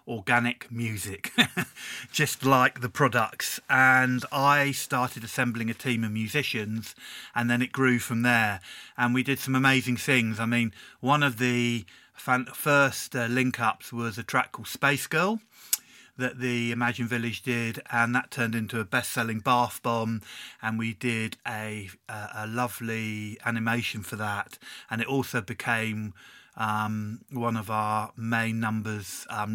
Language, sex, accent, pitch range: Czech, male, British, 110-125 Hz